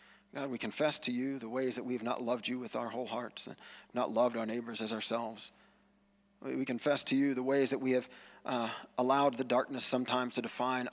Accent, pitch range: American, 125-200 Hz